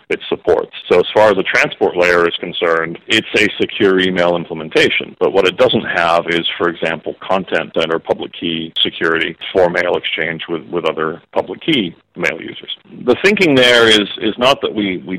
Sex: male